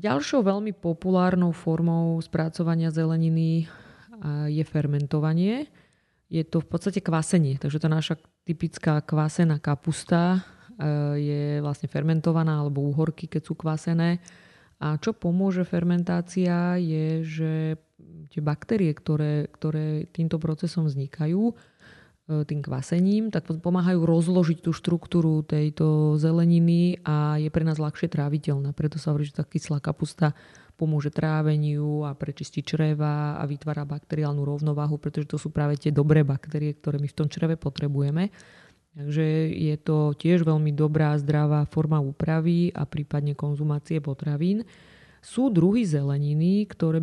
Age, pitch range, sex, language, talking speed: 20-39, 150-170 Hz, female, Slovak, 130 wpm